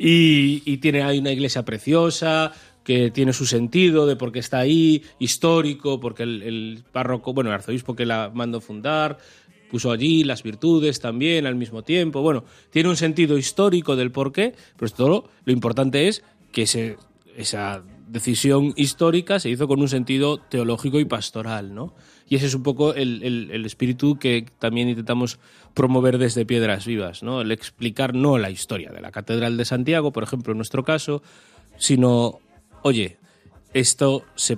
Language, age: Spanish, 30-49